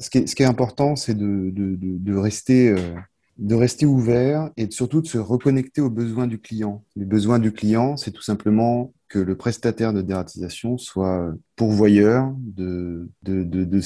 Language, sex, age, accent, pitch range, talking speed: French, male, 30-49, French, 95-120 Hz, 195 wpm